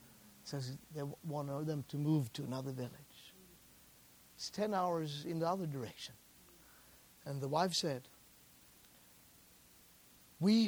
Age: 60-79